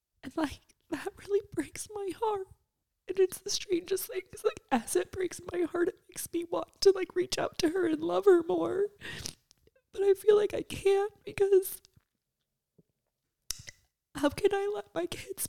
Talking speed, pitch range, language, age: 180 wpm, 275-400 Hz, English, 20-39